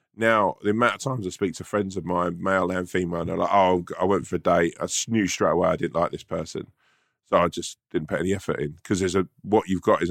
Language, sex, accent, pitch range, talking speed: English, male, British, 85-100 Hz, 265 wpm